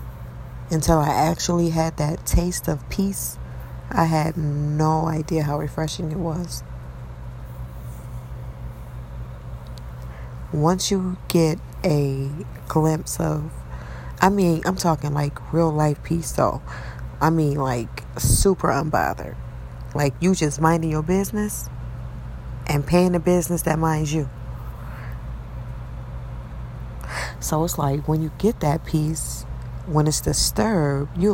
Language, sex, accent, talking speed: English, female, American, 115 wpm